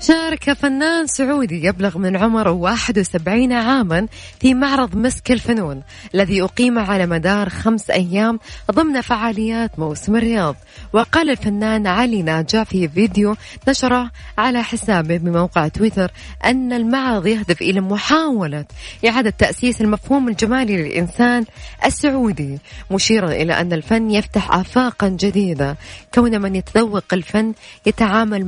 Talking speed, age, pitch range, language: 120 wpm, 20-39, 190-235 Hz, Arabic